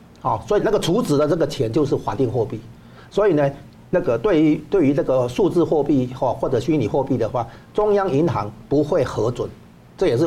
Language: Chinese